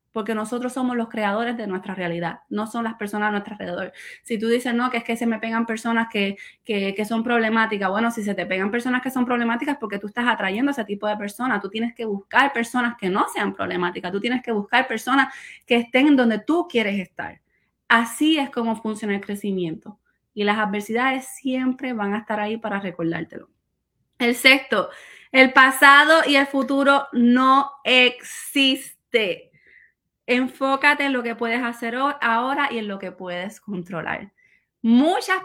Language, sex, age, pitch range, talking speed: Spanish, female, 20-39, 215-265 Hz, 185 wpm